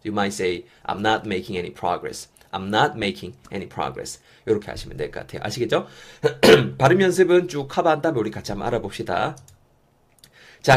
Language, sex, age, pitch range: Korean, male, 30-49, 110-175 Hz